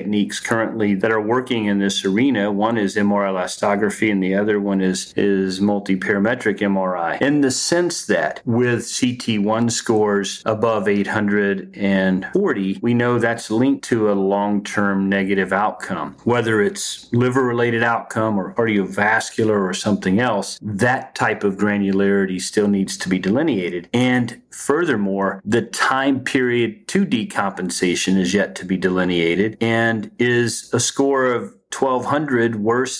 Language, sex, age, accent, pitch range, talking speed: English, male, 40-59, American, 100-120 Hz, 135 wpm